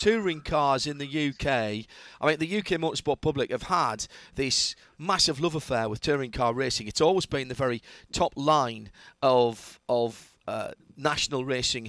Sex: male